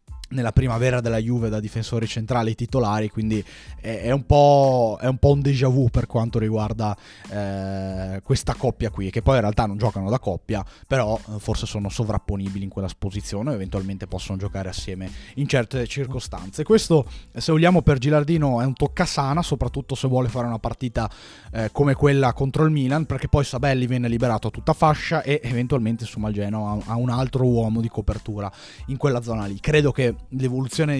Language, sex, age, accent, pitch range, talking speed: Italian, male, 20-39, native, 100-125 Hz, 180 wpm